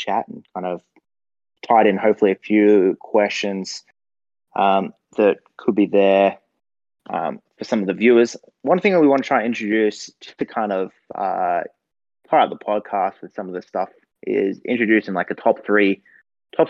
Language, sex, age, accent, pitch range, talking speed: English, male, 20-39, Australian, 95-110 Hz, 185 wpm